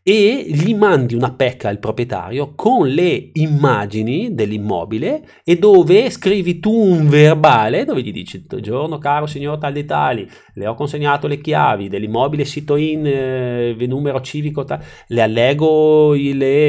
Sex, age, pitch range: male, 30-49, 120-175 Hz